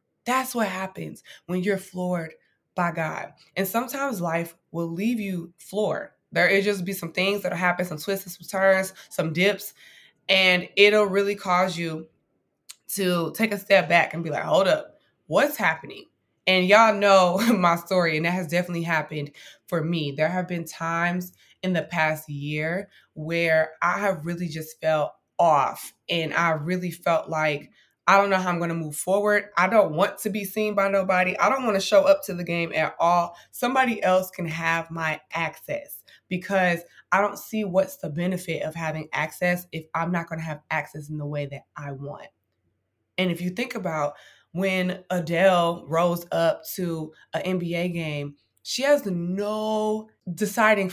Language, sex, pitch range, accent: English, female, 165-195 Hz, American